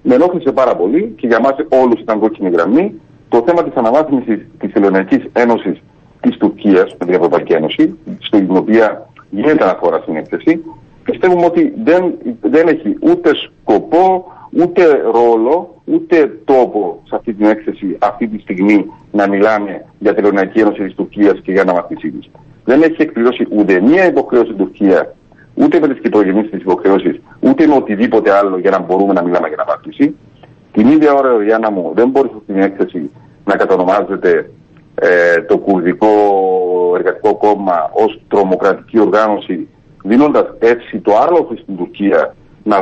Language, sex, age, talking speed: Greek, male, 50-69, 155 wpm